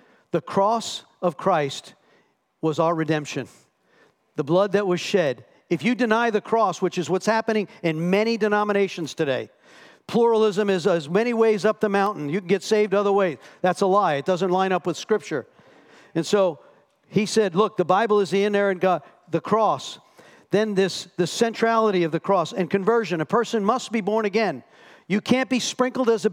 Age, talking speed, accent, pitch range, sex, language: 50-69, 190 wpm, American, 175-215 Hz, male, English